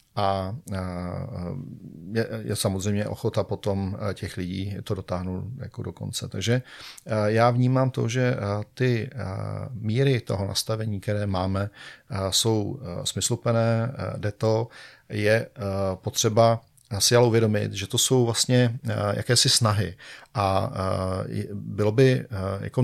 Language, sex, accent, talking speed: Czech, male, native, 110 wpm